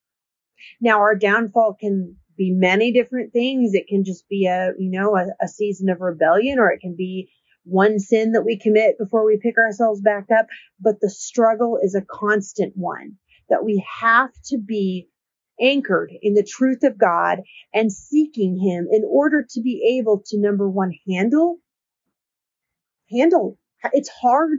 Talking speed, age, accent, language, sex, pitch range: 165 wpm, 40-59, American, English, female, 205-275 Hz